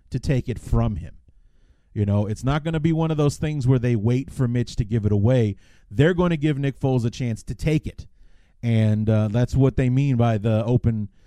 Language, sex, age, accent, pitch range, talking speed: English, male, 30-49, American, 105-135 Hz, 240 wpm